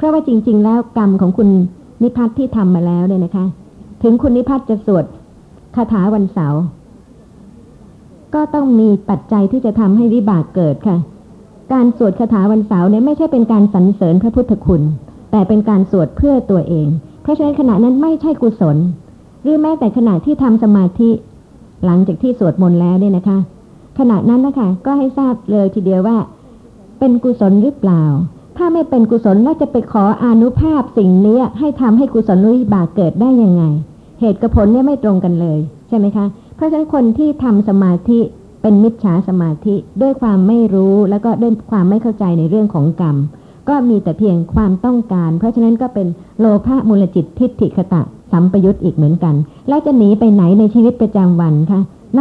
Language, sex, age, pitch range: Thai, male, 60-79, 185-240 Hz